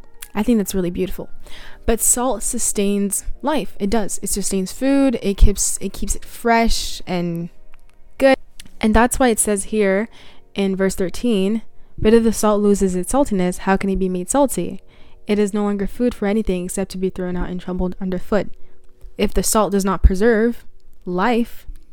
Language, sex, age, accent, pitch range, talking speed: English, female, 20-39, American, 190-230 Hz, 180 wpm